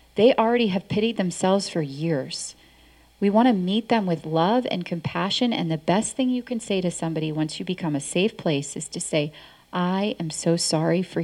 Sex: female